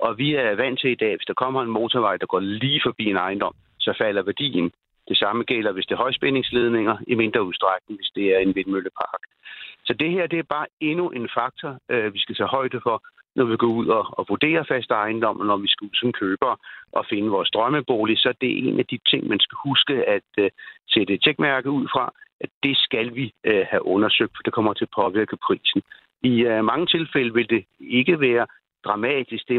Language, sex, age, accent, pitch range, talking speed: Danish, male, 60-79, native, 110-155 Hz, 215 wpm